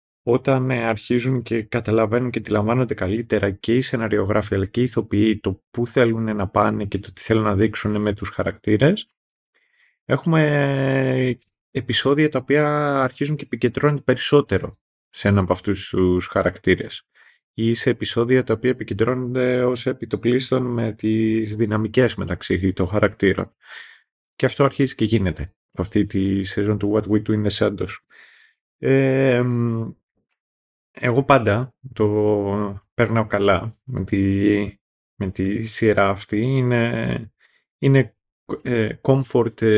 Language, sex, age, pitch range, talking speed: Greek, male, 30-49, 105-130 Hz, 125 wpm